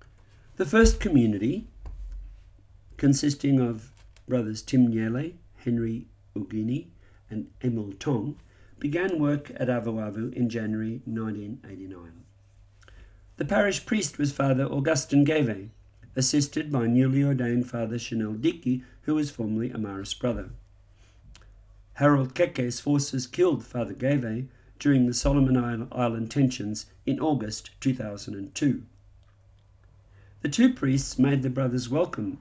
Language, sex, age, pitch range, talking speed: English, male, 50-69, 100-135 Hz, 110 wpm